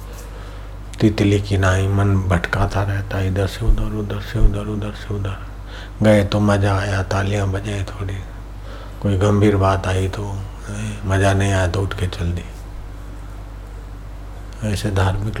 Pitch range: 95-105 Hz